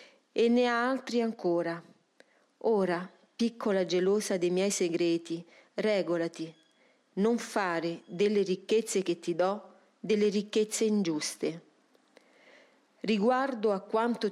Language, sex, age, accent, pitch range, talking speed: Italian, female, 40-59, native, 185-235 Hz, 105 wpm